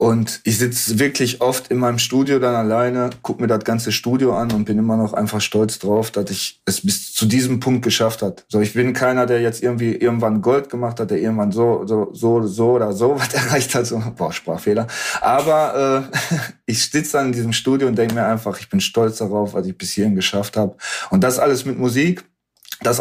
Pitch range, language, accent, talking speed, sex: 110-135 Hz, German, German, 220 wpm, male